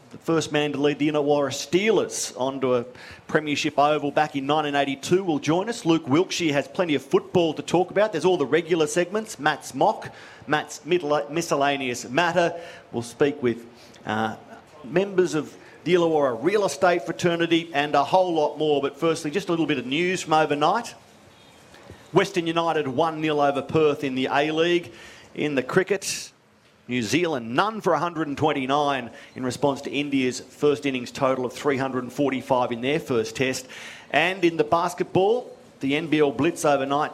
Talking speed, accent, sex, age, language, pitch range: 160 wpm, Australian, male, 40-59, English, 135-170 Hz